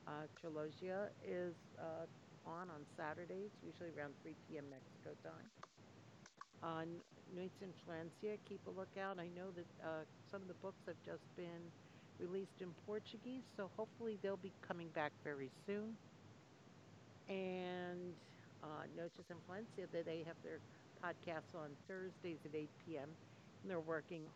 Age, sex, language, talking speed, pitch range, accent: 60-79, female, English, 145 wpm, 150-185 Hz, American